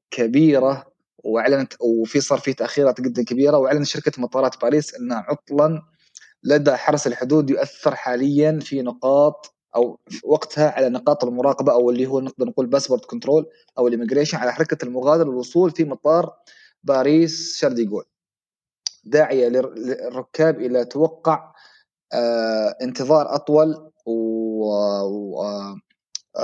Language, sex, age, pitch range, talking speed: Arabic, male, 30-49, 120-155 Hz, 120 wpm